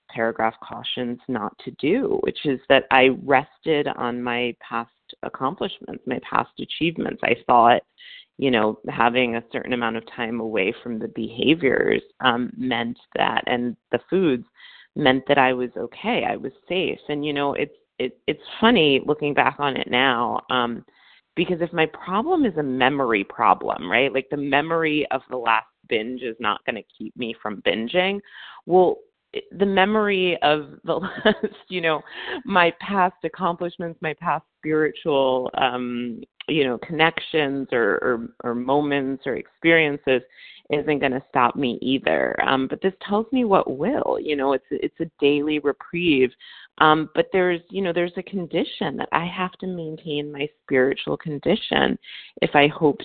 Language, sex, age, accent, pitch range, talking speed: English, female, 30-49, American, 125-175 Hz, 165 wpm